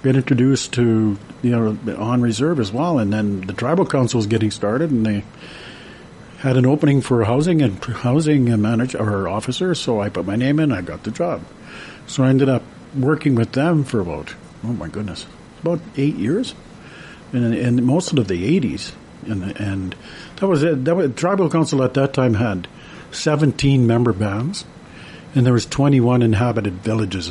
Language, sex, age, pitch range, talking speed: English, male, 50-69, 105-135 Hz, 180 wpm